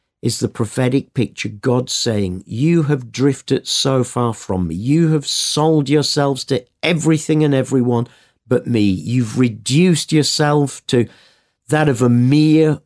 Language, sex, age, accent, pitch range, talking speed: English, male, 50-69, British, 110-145 Hz, 145 wpm